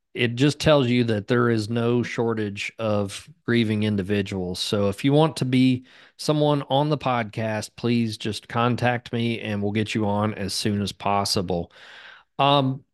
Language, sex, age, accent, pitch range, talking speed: English, male, 40-59, American, 110-135 Hz, 165 wpm